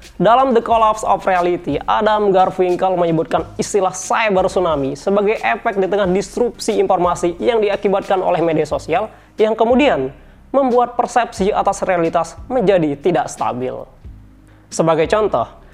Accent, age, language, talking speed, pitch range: native, 20-39, Indonesian, 125 wpm, 175-230 Hz